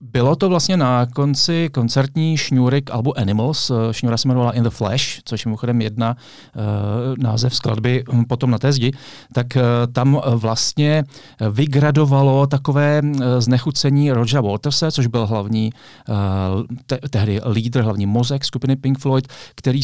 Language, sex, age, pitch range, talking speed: Czech, male, 40-59, 110-130 Hz, 145 wpm